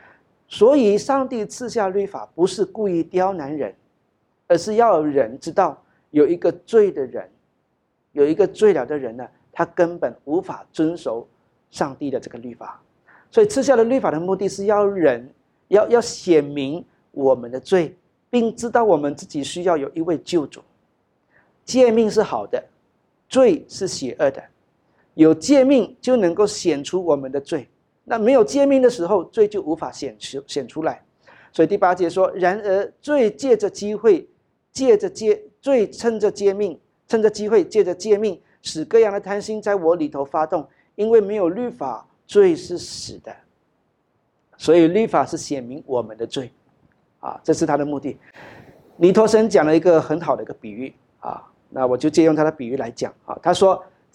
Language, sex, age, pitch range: Chinese, male, 50-69, 165-240 Hz